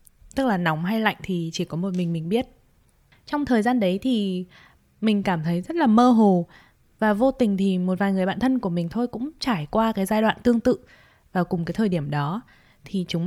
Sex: female